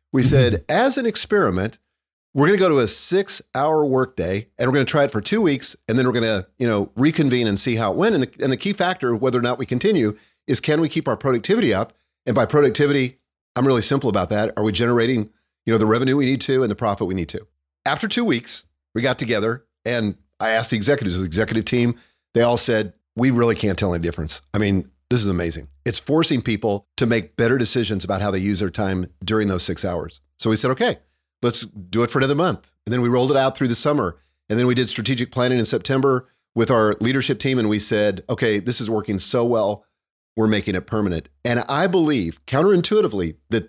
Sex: male